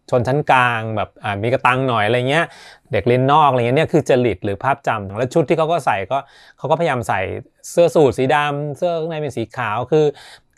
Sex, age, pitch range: male, 20-39, 115-150 Hz